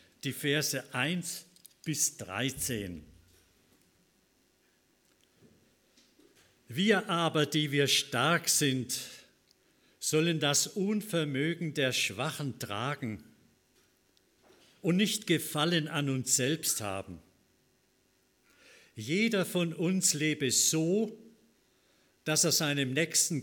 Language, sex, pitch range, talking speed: German, male, 130-170 Hz, 85 wpm